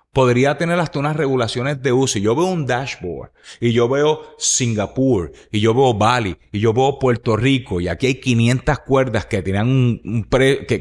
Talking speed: 195 wpm